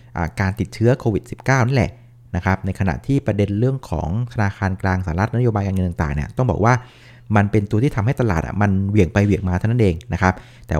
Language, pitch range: Thai, 95-125 Hz